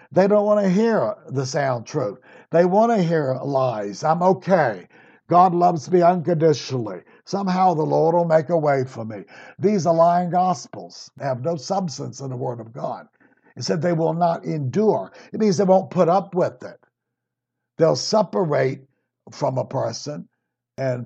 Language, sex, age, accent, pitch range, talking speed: English, male, 60-79, American, 140-195 Hz, 170 wpm